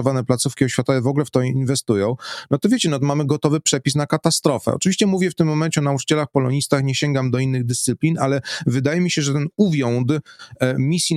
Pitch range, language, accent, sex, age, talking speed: 125-155 Hz, Polish, native, male, 30-49, 195 wpm